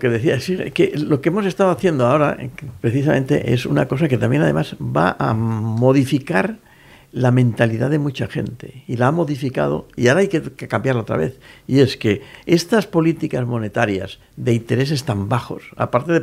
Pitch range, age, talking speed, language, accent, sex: 120-160 Hz, 60-79, 180 wpm, Spanish, Spanish, male